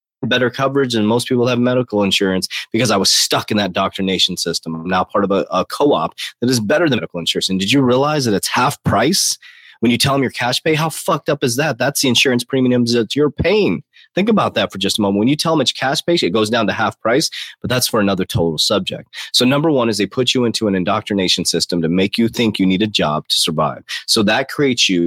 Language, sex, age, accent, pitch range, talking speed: English, male, 30-49, American, 95-125 Hz, 255 wpm